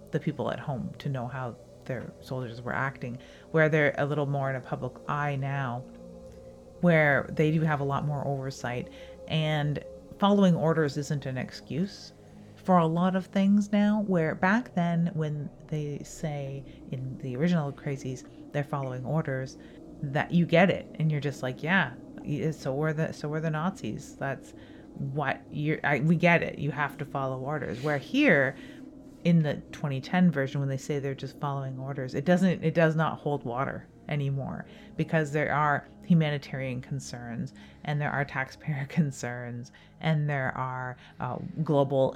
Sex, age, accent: female, 30-49, American